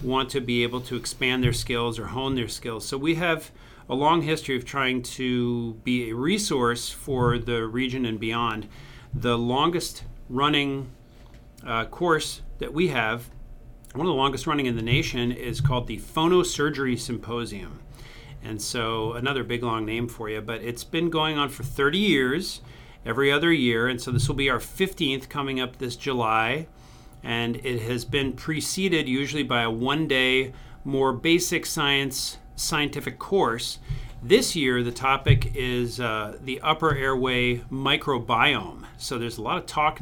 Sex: male